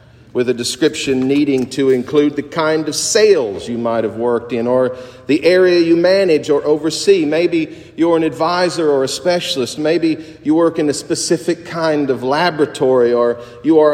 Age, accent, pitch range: 40-59, American, 135-185 Hz